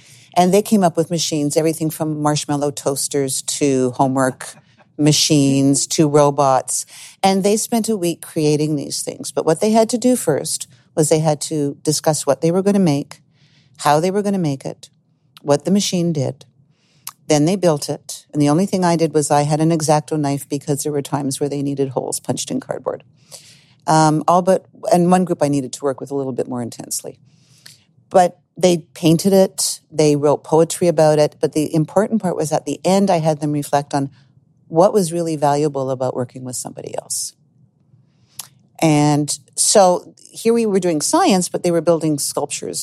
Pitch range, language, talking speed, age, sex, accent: 140-165 Hz, English, 195 wpm, 50-69, female, American